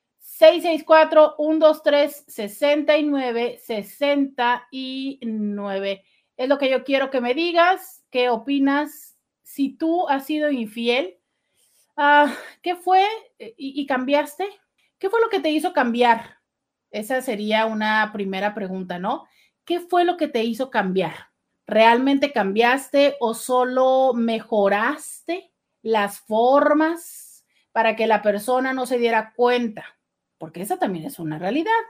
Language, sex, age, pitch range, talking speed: Spanish, female, 40-59, 215-290 Hz, 115 wpm